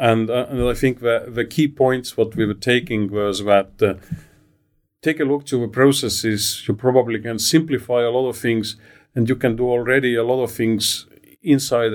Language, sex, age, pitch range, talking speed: English, male, 40-59, 105-125 Hz, 200 wpm